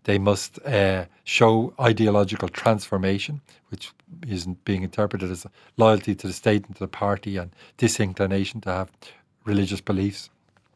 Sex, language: male, English